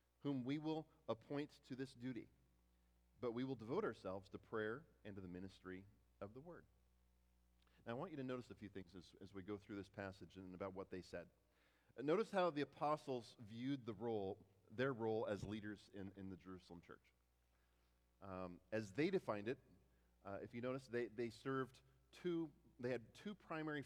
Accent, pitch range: American, 95-140 Hz